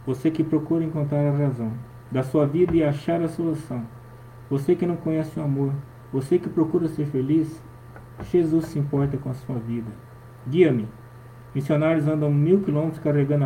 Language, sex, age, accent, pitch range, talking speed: Portuguese, male, 20-39, Brazilian, 120-155 Hz, 165 wpm